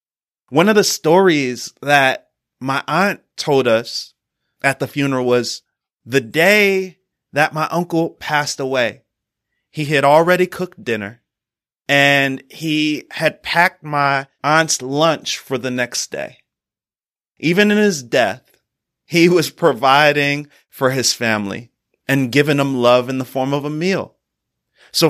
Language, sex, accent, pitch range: English, male, American, 125-155 Hz